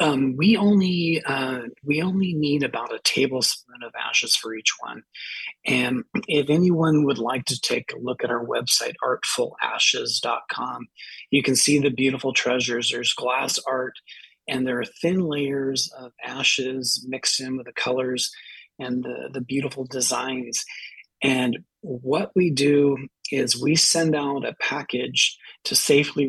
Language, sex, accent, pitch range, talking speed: English, male, American, 130-145 Hz, 150 wpm